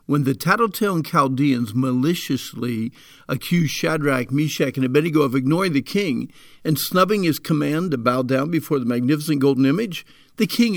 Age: 50-69